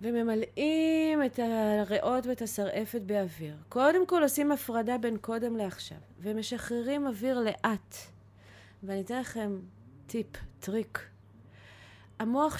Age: 30-49